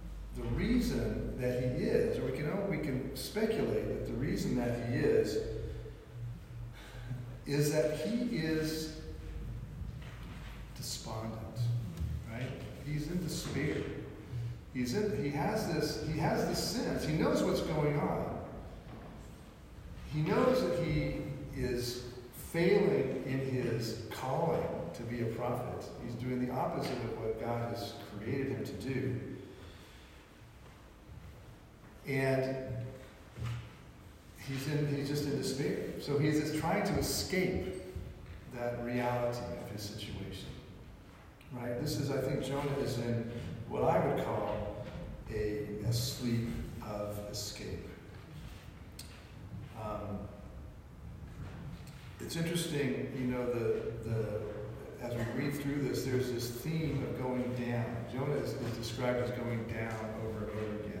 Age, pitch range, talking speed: 40-59, 110-140 Hz, 115 wpm